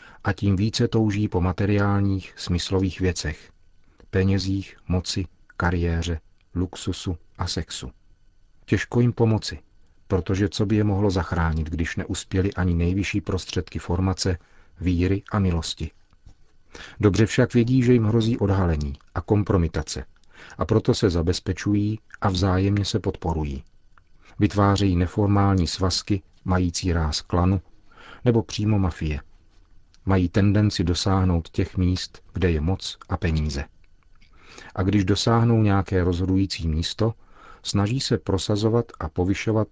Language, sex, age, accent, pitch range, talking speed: Czech, male, 40-59, native, 90-105 Hz, 120 wpm